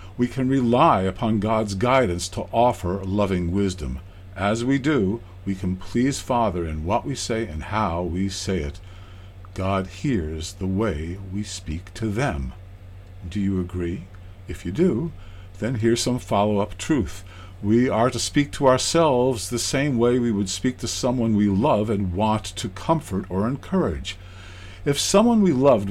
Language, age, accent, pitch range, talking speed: English, 50-69, American, 95-120 Hz, 165 wpm